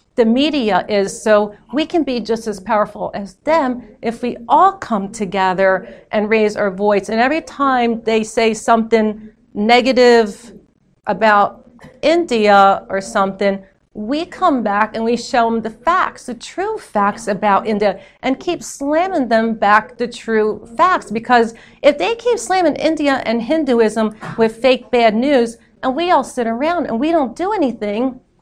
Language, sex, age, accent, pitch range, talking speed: English, female, 40-59, American, 205-260 Hz, 160 wpm